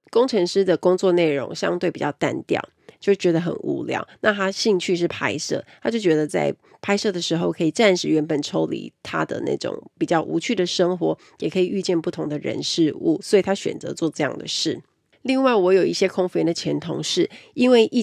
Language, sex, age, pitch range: Chinese, female, 30-49, 170-245 Hz